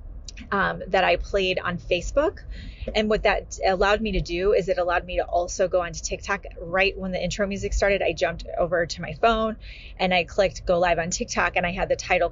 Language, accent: English, American